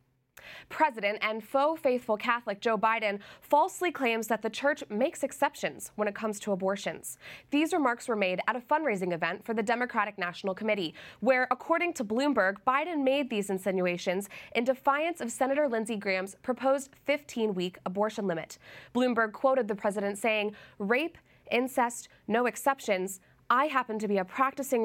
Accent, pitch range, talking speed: American, 195-265 Hz, 155 wpm